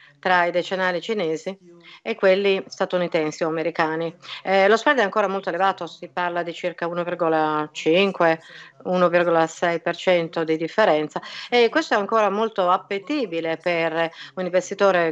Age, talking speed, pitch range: 50-69, 125 wpm, 165-195 Hz